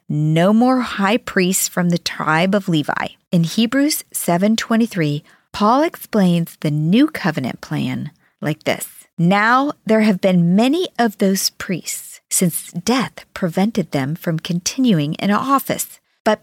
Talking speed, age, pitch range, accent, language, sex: 135 wpm, 40-59, 165-235 Hz, American, English, female